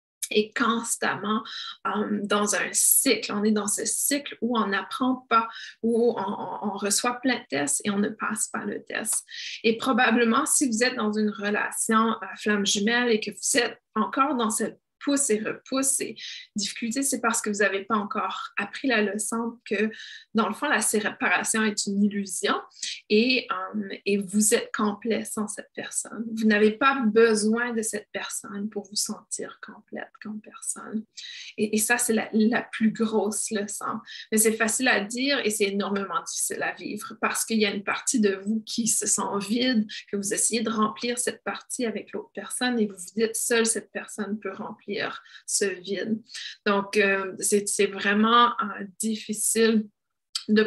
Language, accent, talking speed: French, Canadian, 185 wpm